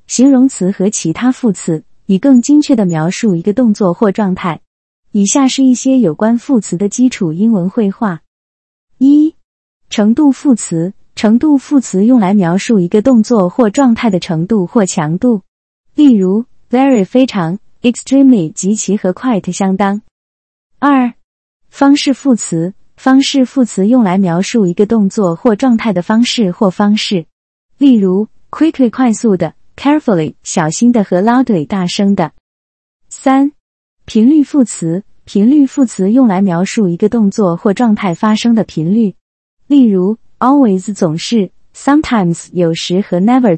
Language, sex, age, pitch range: Chinese, female, 20-39, 185-255 Hz